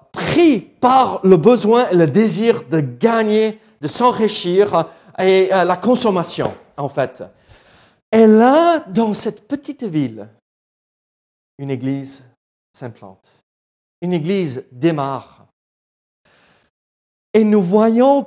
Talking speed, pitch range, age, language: 105 wpm, 140-225 Hz, 40-59, French